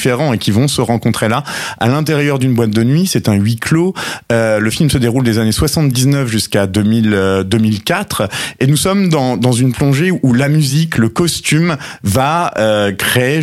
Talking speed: 190 wpm